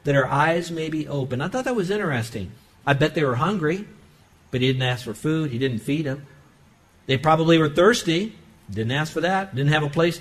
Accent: American